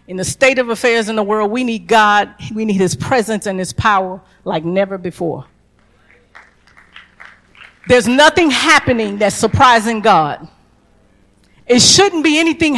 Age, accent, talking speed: 50-69, American, 145 wpm